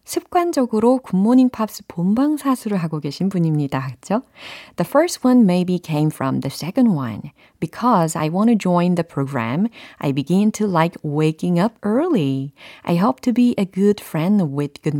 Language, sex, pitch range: Korean, female, 150-225 Hz